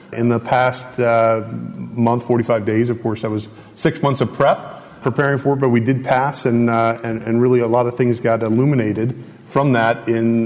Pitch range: 115-140 Hz